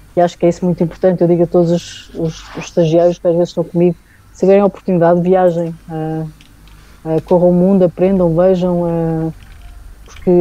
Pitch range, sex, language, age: 165-185 Hz, female, Portuguese, 20-39